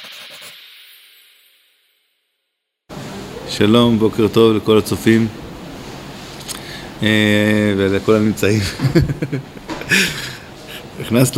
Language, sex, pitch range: Hebrew, male, 110-130 Hz